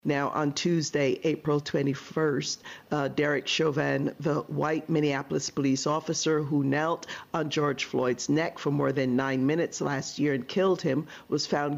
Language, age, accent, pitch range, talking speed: English, 50-69, American, 145-165 Hz, 160 wpm